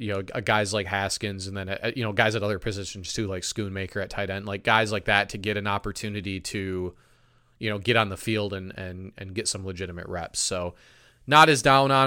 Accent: American